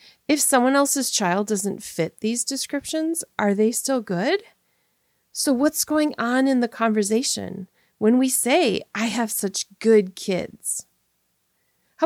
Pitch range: 190-270 Hz